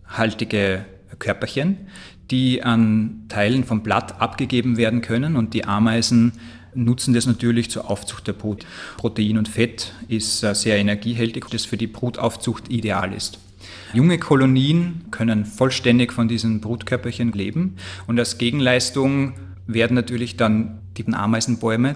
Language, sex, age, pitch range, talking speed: German, male, 30-49, 105-120 Hz, 135 wpm